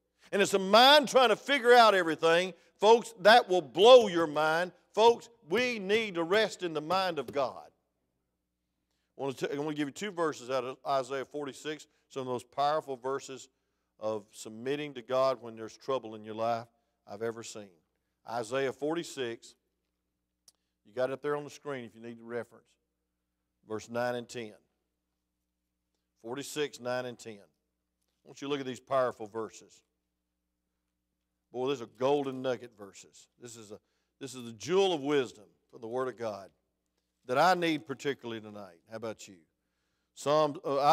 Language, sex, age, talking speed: English, male, 50-69, 175 wpm